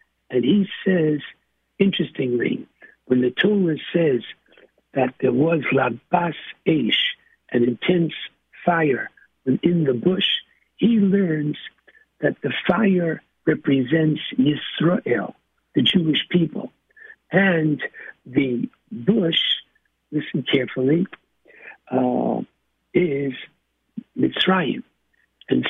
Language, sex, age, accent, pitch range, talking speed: English, male, 60-79, American, 135-190 Hz, 90 wpm